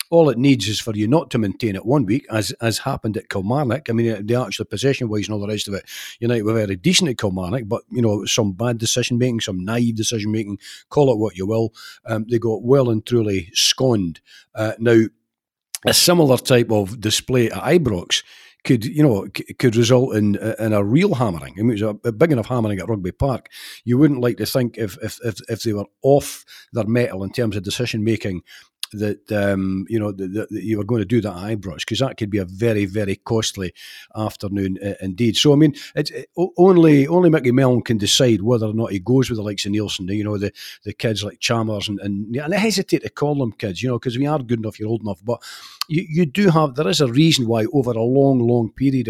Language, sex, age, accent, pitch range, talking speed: English, male, 40-59, British, 105-130 Hz, 235 wpm